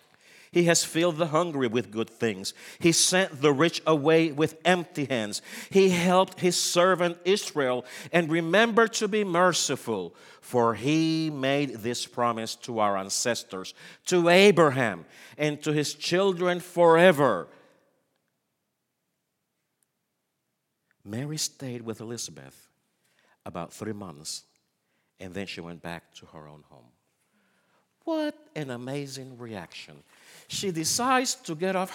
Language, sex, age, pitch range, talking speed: English, male, 50-69, 125-205 Hz, 125 wpm